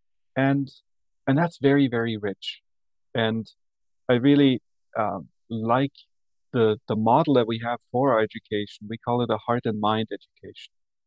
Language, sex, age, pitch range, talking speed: English, male, 40-59, 105-130 Hz, 150 wpm